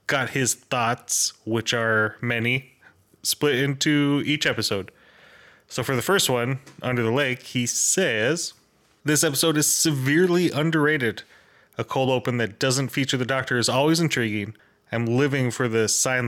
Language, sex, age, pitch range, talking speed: English, male, 20-39, 115-145 Hz, 150 wpm